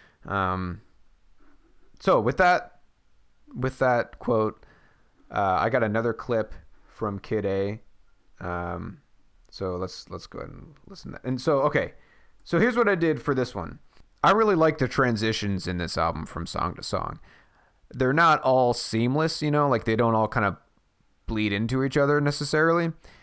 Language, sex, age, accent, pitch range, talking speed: English, male, 30-49, American, 95-125 Hz, 170 wpm